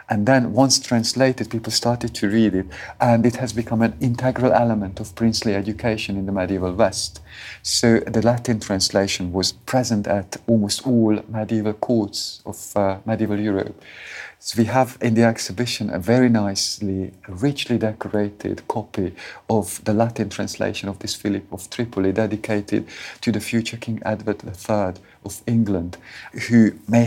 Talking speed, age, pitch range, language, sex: 155 wpm, 50-69, 100-120 Hz, English, male